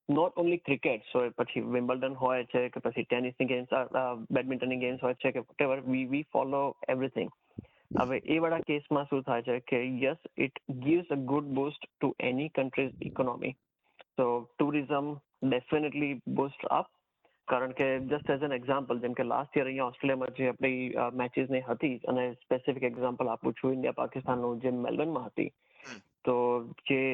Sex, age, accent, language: male, 20-39, native, Gujarati